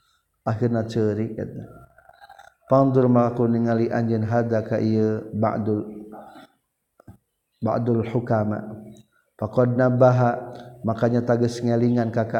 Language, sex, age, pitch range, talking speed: Indonesian, male, 50-69, 110-125 Hz, 80 wpm